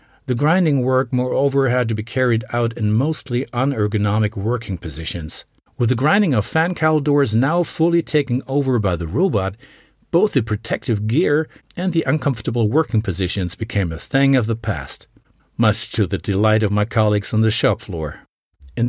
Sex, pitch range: male, 100-135 Hz